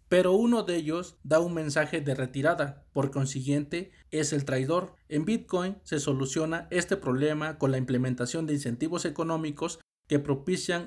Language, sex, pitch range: Spanish, male, 140-180 Hz